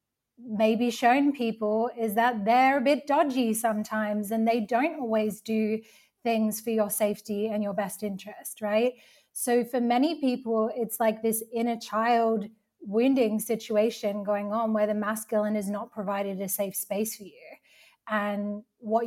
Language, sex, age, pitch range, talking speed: English, female, 20-39, 210-240 Hz, 155 wpm